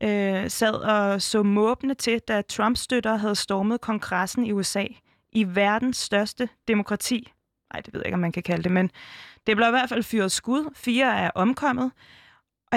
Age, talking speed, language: 20-39, 185 wpm, Danish